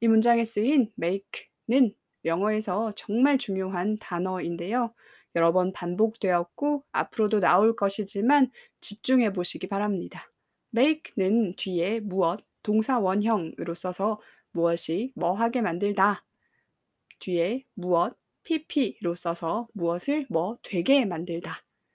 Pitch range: 185-255 Hz